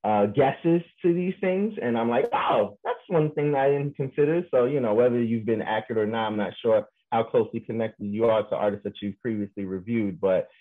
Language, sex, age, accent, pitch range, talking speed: English, male, 30-49, American, 110-140 Hz, 220 wpm